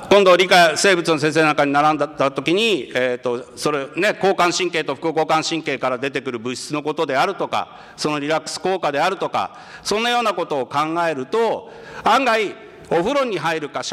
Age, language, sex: 50-69, Japanese, male